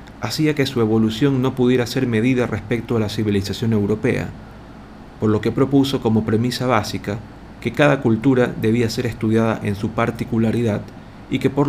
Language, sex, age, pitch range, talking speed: Spanish, male, 40-59, 105-125 Hz, 165 wpm